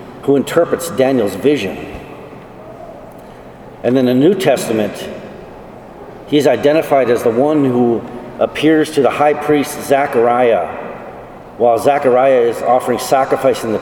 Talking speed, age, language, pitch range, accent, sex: 120 wpm, 50-69, English, 120-145 Hz, American, male